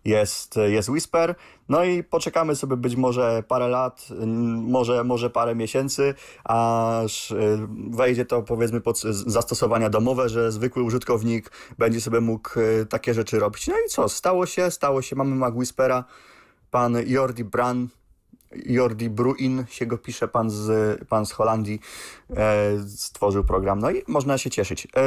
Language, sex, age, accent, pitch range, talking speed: Polish, male, 30-49, native, 110-135 Hz, 145 wpm